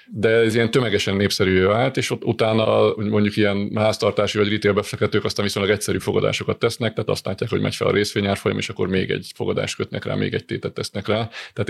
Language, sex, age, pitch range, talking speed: Hungarian, male, 30-49, 100-110 Hz, 215 wpm